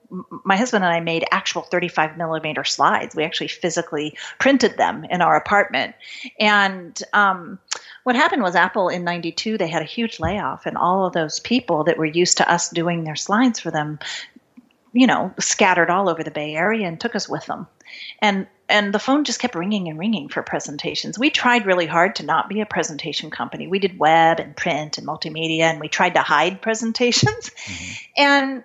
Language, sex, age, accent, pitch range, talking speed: English, female, 40-59, American, 165-220 Hz, 195 wpm